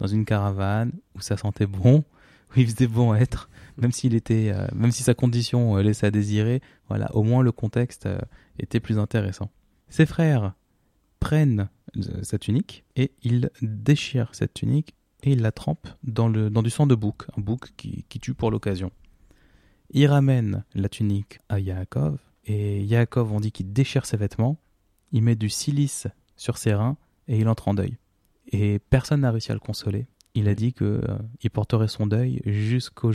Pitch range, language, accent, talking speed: 105-125 Hz, French, French, 180 wpm